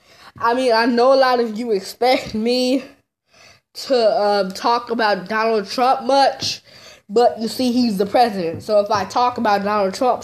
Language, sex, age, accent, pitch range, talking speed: English, female, 20-39, American, 195-240 Hz, 175 wpm